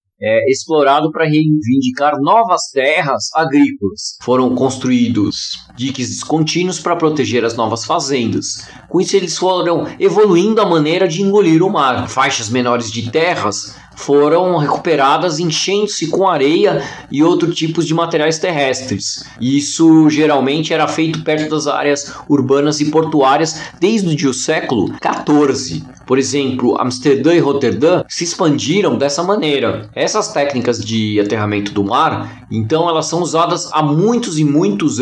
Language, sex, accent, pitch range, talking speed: Portuguese, male, Brazilian, 125-165 Hz, 135 wpm